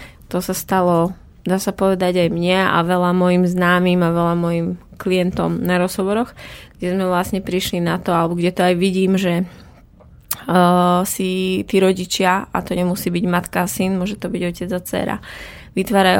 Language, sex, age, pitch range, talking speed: Slovak, female, 20-39, 180-195 Hz, 180 wpm